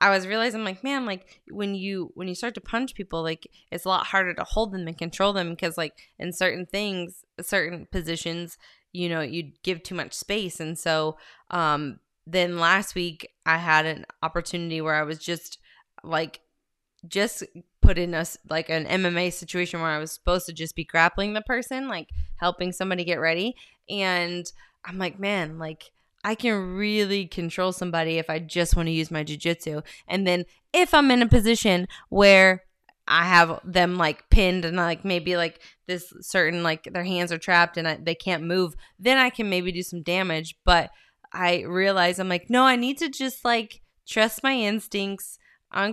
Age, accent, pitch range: 20-39, American, 165-195 Hz